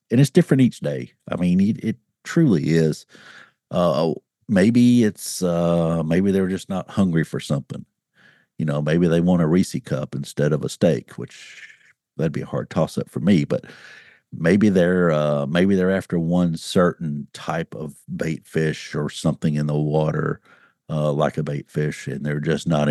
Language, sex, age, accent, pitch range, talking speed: English, male, 50-69, American, 75-95 Hz, 185 wpm